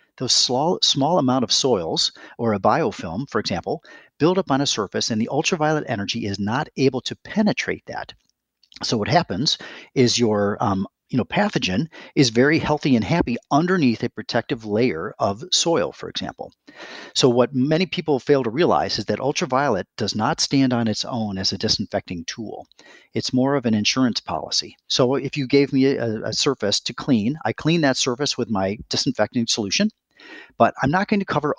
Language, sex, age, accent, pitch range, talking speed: English, male, 40-59, American, 115-145 Hz, 185 wpm